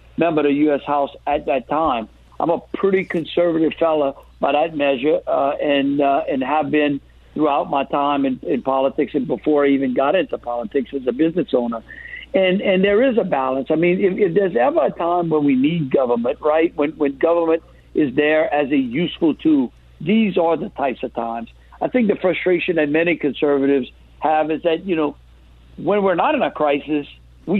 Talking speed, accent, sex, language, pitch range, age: 200 wpm, American, male, English, 140-180 Hz, 60-79